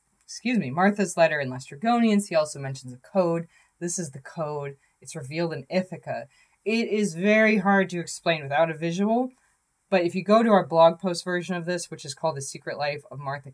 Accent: American